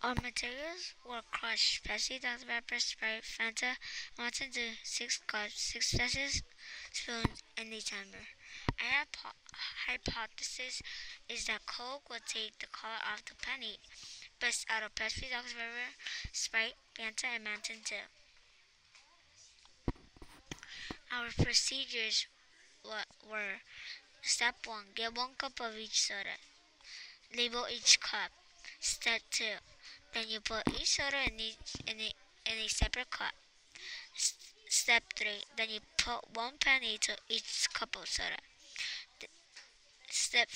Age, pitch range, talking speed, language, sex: 20-39, 220-255 Hz, 130 wpm, English, male